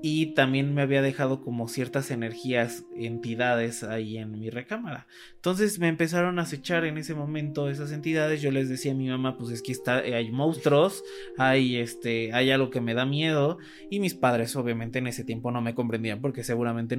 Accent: Mexican